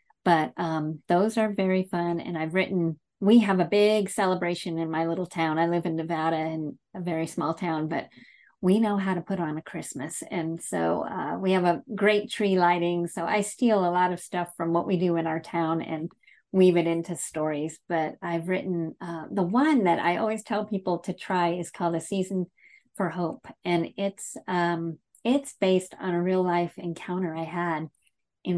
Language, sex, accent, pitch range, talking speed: English, female, American, 165-185 Hz, 200 wpm